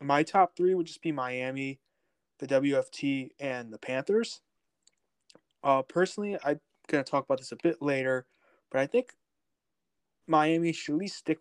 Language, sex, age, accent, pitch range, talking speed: English, male, 20-39, American, 125-150 Hz, 165 wpm